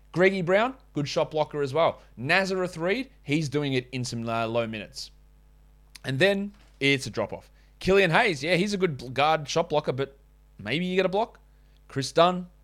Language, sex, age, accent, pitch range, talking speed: English, male, 30-49, Australian, 115-150 Hz, 180 wpm